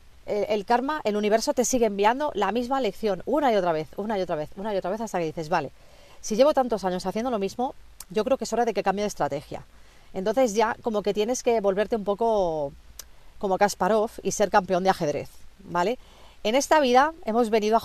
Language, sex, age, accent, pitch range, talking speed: Spanish, female, 40-59, Spanish, 175-220 Hz, 220 wpm